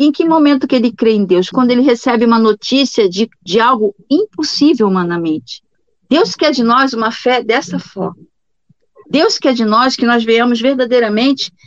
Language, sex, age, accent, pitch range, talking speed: Portuguese, female, 50-69, Brazilian, 195-255 Hz, 175 wpm